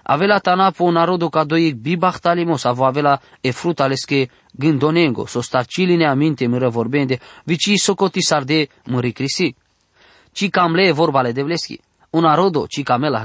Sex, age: male, 20-39